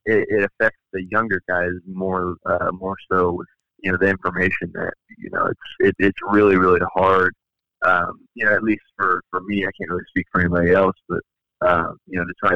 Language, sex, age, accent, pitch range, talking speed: English, male, 30-49, American, 90-95 Hz, 215 wpm